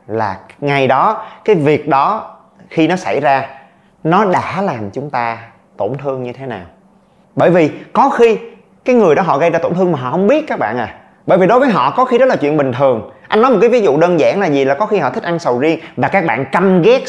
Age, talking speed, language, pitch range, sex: 30-49, 260 wpm, Vietnamese, 135-205 Hz, male